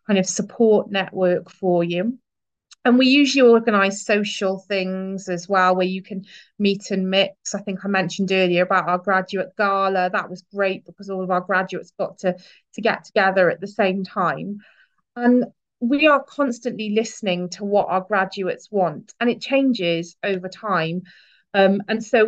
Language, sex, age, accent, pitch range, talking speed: English, female, 30-49, British, 190-220 Hz, 170 wpm